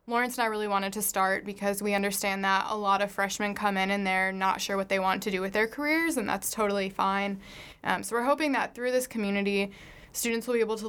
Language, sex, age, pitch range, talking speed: English, female, 20-39, 195-210 Hz, 255 wpm